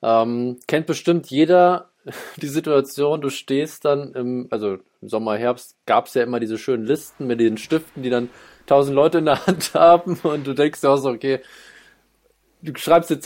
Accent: German